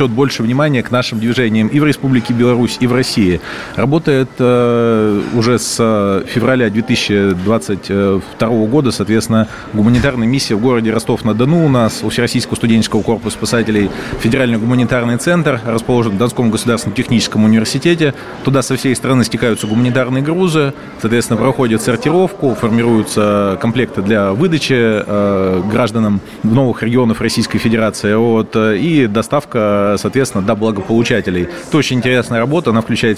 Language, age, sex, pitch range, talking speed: Russian, 30-49, male, 110-130 Hz, 130 wpm